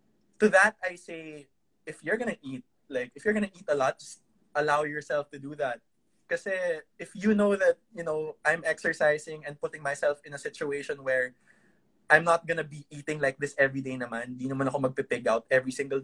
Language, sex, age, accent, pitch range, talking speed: English, male, 20-39, Filipino, 135-175 Hz, 200 wpm